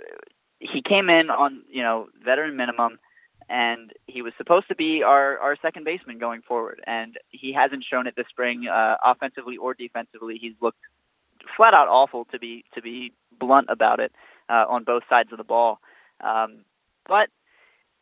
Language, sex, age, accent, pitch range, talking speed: English, male, 20-39, American, 120-145 Hz, 170 wpm